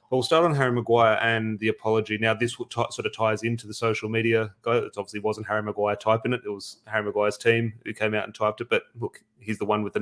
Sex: male